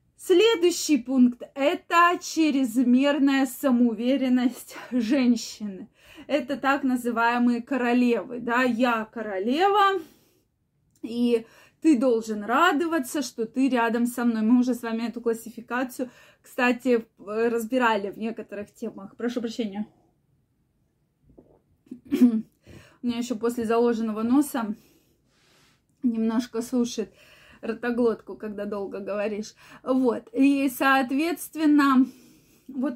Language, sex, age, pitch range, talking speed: Russian, female, 20-39, 230-285 Hz, 95 wpm